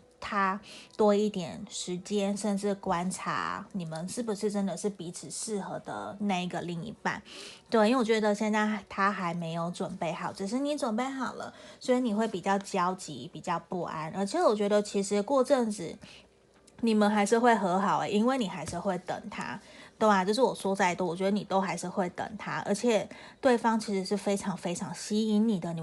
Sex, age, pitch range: female, 20-39, 190-235 Hz